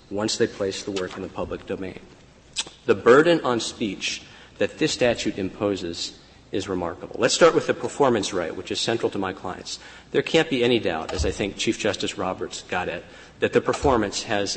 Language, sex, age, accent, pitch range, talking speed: English, male, 40-59, American, 100-130 Hz, 200 wpm